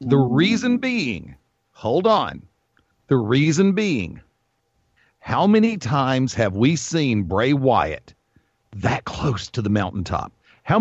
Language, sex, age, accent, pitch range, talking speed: English, male, 40-59, American, 115-165 Hz, 120 wpm